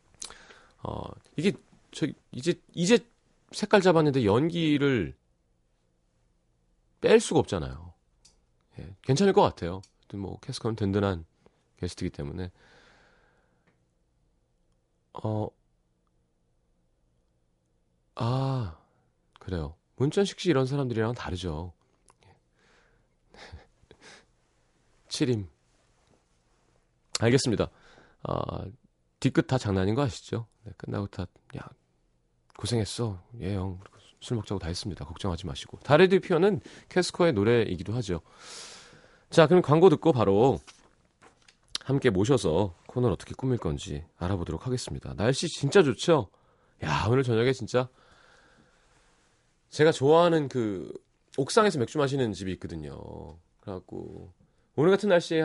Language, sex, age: Korean, male, 30-49